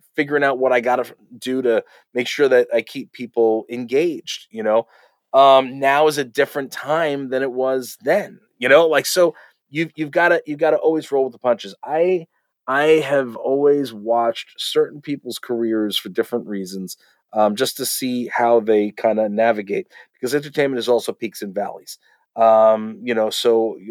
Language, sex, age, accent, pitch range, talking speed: English, male, 30-49, American, 125-185 Hz, 185 wpm